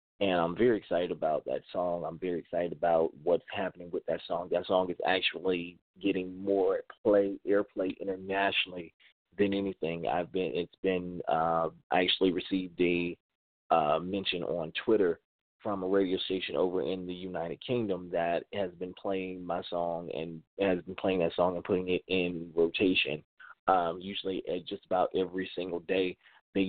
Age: 30-49